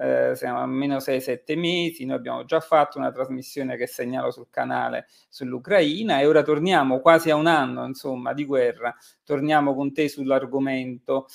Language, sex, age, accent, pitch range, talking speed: Italian, male, 40-59, native, 130-160 Hz, 165 wpm